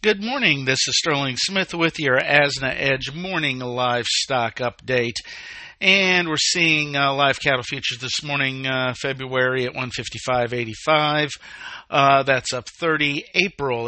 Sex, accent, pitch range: male, American, 130-155 Hz